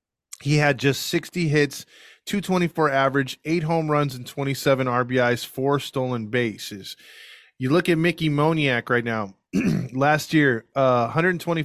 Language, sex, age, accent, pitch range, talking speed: English, male, 20-39, American, 130-155 Hz, 155 wpm